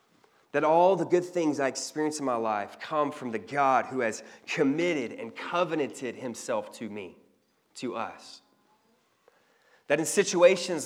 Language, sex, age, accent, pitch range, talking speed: English, male, 30-49, American, 120-160 Hz, 150 wpm